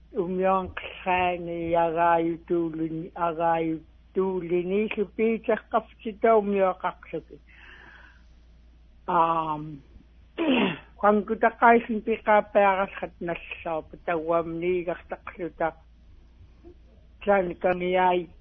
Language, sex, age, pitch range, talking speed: English, male, 60-79, 170-220 Hz, 80 wpm